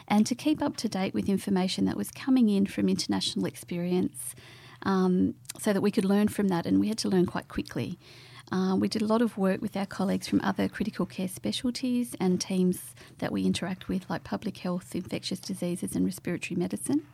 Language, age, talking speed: English, 40-59, 205 wpm